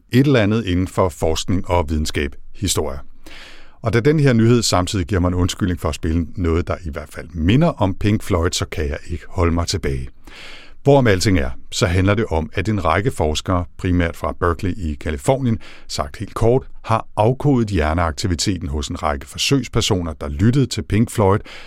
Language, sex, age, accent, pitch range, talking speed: Danish, male, 60-79, native, 80-110 Hz, 185 wpm